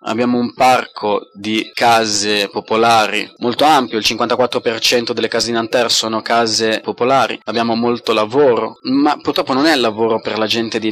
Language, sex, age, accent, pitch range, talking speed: Italian, male, 20-39, native, 110-135 Hz, 160 wpm